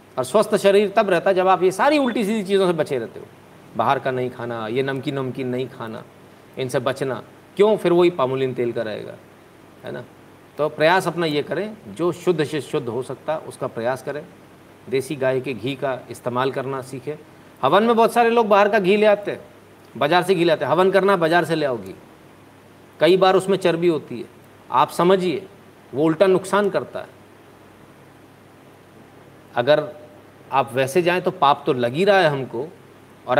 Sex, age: male, 50-69